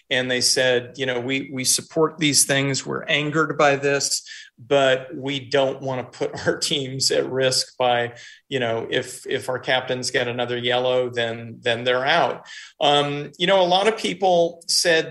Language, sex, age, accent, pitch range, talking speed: English, male, 40-59, American, 125-155 Hz, 185 wpm